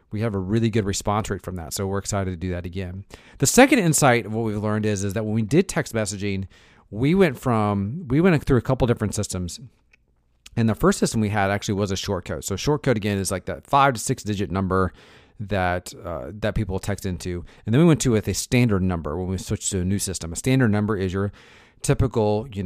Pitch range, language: 95-115 Hz, English